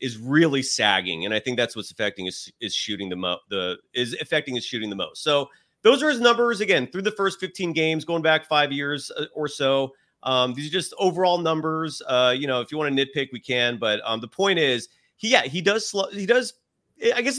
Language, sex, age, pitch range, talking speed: English, male, 30-49, 115-175 Hz, 240 wpm